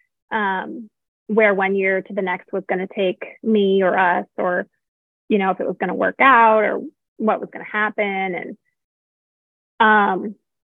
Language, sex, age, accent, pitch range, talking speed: English, female, 20-39, American, 195-250 Hz, 180 wpm